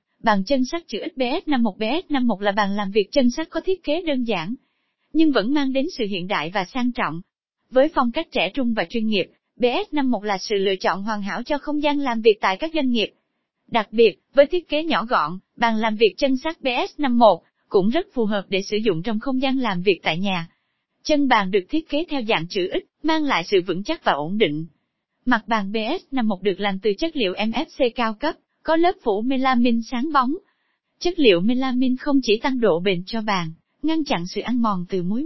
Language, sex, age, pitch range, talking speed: Vietnamese, female, 20-39, 205-290 Hz, 225 wpm